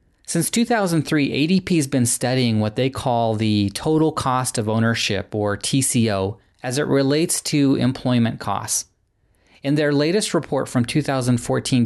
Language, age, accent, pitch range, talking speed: English, 30-49, American, 110-150 Hz, 140 wpm